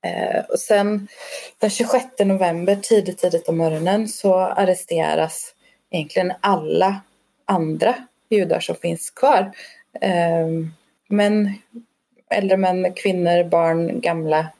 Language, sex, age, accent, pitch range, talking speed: Swedish, female, 20-39, native, 170-220 Hz, 95 wpm